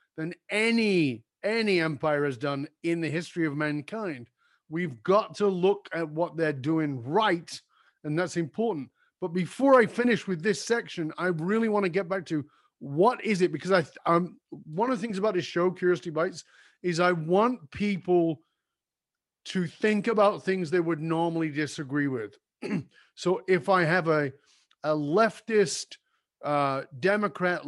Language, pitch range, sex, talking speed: English, 150-190 Hz, male, 160 wpm